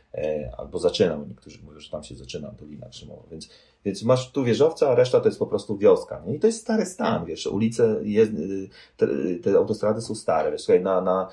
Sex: male